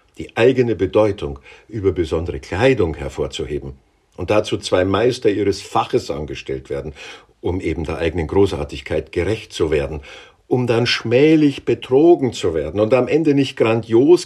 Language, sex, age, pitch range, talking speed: German, male, 50-69, 90-125 Hz, 145 wpm